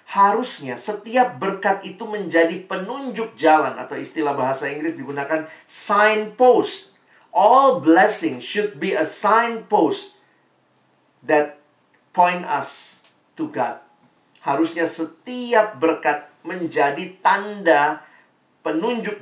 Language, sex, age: Indonesian, male, 50-69